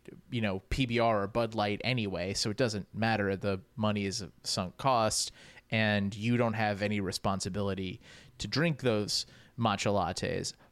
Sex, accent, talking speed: male, American, 155 wpm